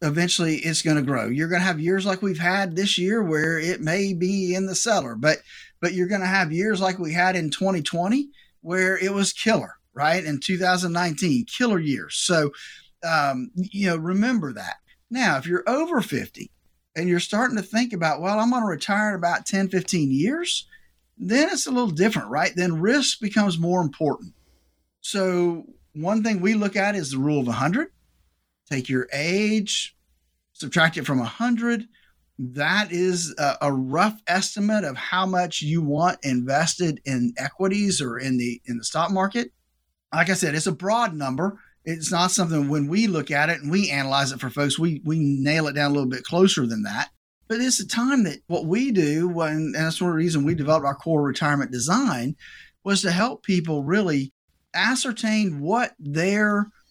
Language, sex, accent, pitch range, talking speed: English, male, American, 150-200 Hz, 195 wpm